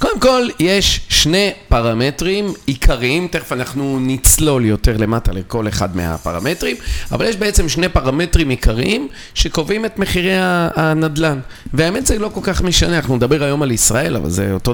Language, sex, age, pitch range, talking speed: Hebrew, male, 40-59, 115-165 Hz, 155 wpm